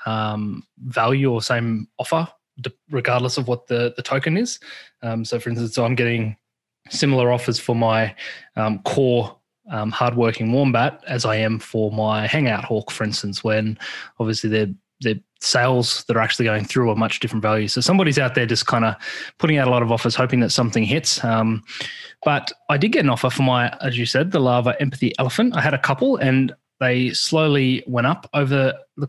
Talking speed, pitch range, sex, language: 200 wpm, 115-140 Hz, male, English